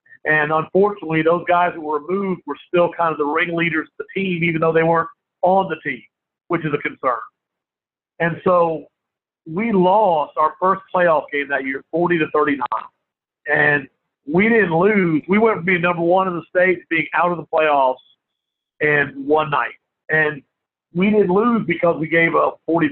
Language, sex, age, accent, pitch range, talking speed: English, male, 50-69, American, 150-175 Hz, 185 wpm